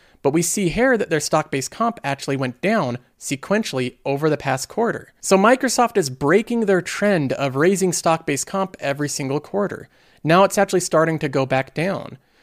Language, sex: English, male